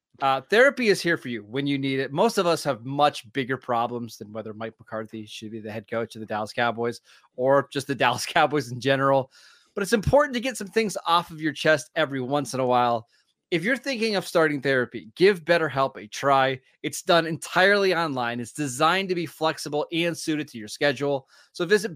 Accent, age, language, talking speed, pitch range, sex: American, 20-39, English, 215 wpm, 130-170 Hz, male